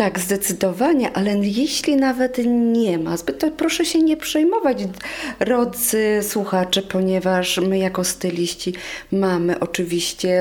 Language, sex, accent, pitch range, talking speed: Polish, female, native, 180-210 Hz, 120 wpm